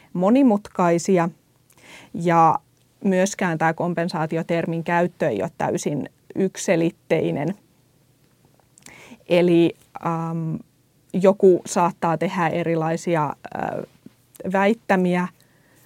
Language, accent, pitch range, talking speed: Finnish, native, 165-185 Hz, 70 wpm